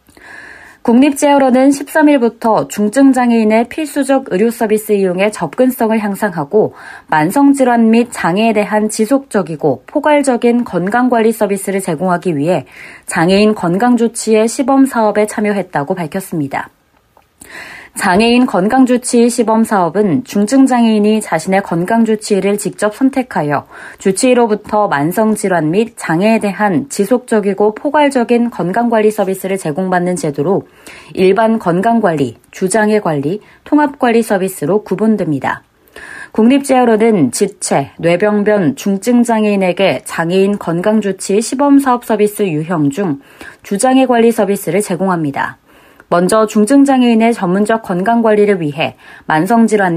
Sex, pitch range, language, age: female, 195-245 Hz, Korean, 20-39